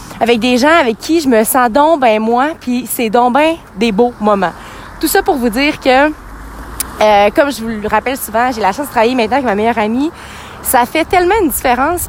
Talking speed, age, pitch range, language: 230 wpm, 30-49, 225-295 Hz, French